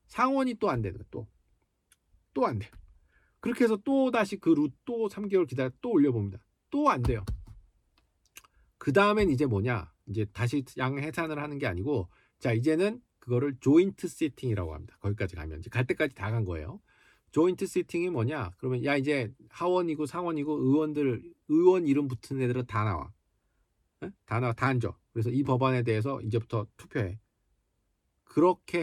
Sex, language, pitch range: male, Korean, 105-155 Hz